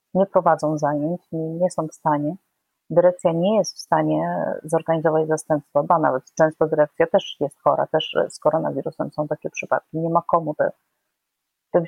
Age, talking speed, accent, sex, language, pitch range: 30-49, 160 wpm, native, female, Polish, 160-195 Hz